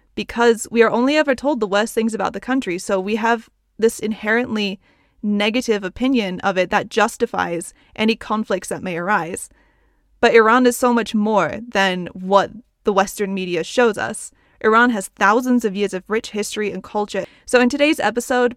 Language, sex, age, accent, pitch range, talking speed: English, female, 20-39, American, 195-245 Hz, 180 wpm